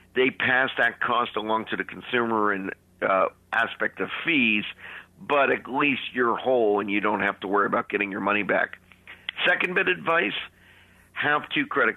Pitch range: 105-120 Hz